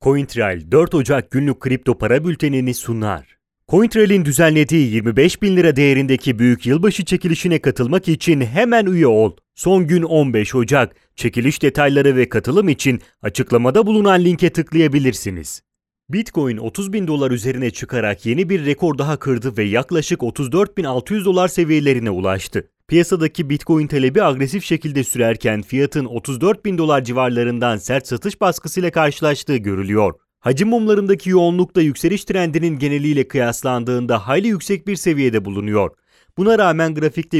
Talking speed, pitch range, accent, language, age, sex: 130 wpm, 120-175 Hz, Turkish, Italian, 30-49, male